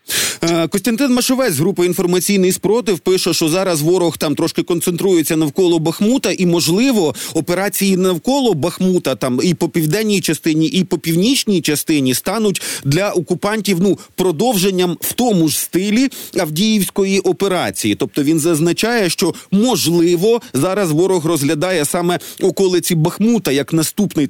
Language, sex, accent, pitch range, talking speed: Ukrainian, male, native, 160-195 Hz, 130 wpm